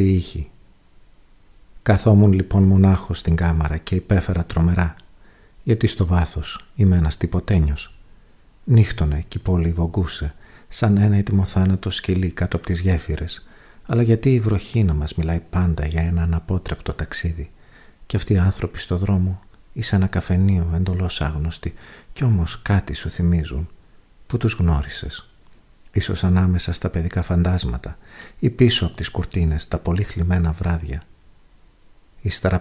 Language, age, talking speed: Greek, 50-69, 135 wpm